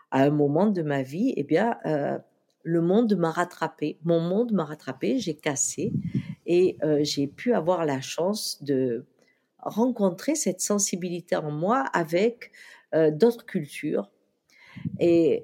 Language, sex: French, female